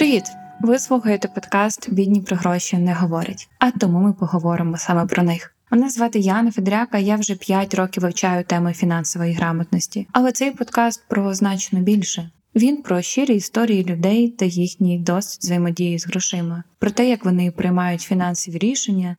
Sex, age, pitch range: female, 20-39, 175-210 Hz